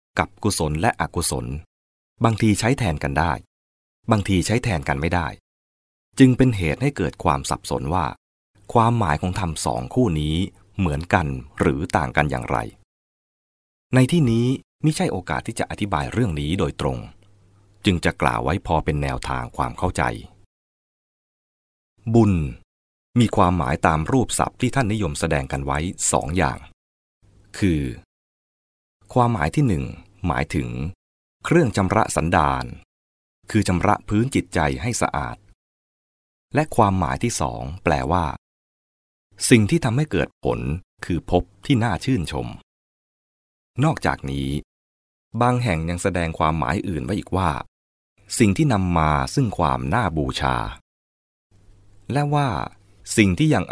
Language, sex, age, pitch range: English, male, 20-39, 70-105 Hz